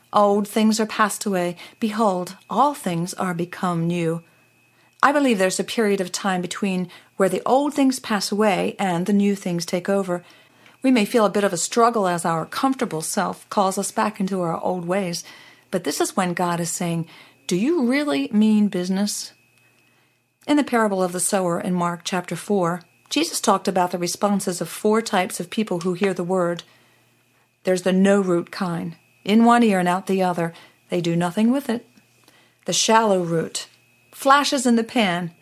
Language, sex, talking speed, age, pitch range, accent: English, female, 185 wpm, 40-59, 175-220 Hz, American